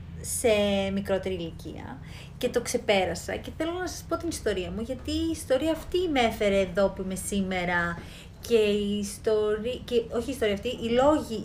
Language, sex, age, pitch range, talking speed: Greek, female, 30-49, 190-280 Hz, 180 wpm